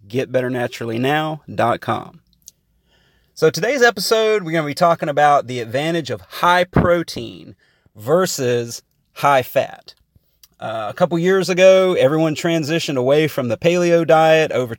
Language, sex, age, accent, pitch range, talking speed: English, male, 30-49, American, 130-170 Hz, 125 wpm